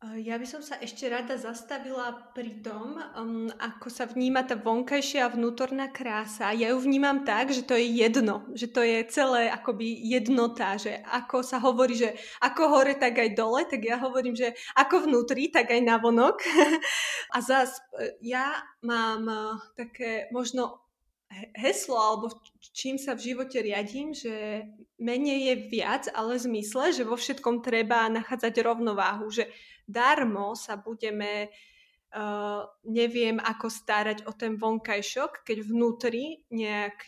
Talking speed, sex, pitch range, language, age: 145 wpm, female, 220-255 Hz, Slovak, 20-39